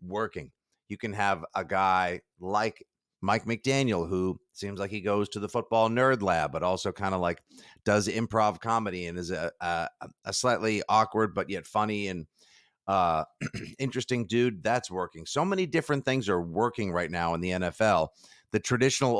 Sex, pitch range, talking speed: male, 95-130 Hz, 175 wpm